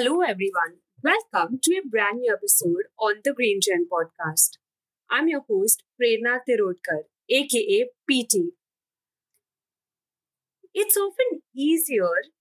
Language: English